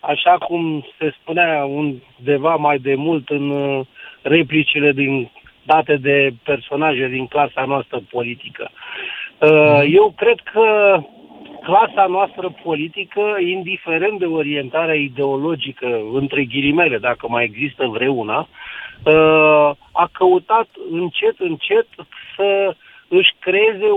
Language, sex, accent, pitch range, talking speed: Romanian, male, native, 145-205 Hz, 105 wpm